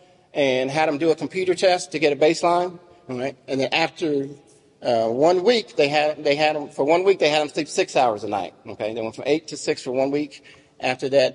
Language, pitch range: English, 135-180 Hz